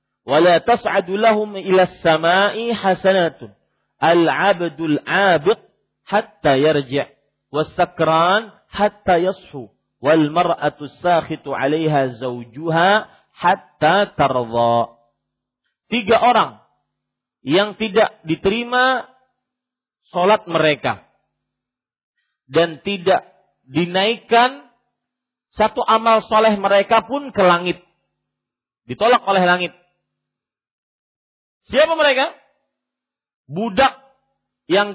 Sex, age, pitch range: male, 50-69, 155-225 Hz